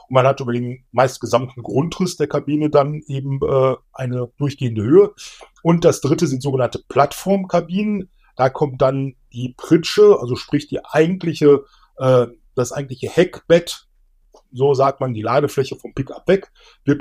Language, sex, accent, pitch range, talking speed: German, male, German, 130-175 Hz, 150 wpm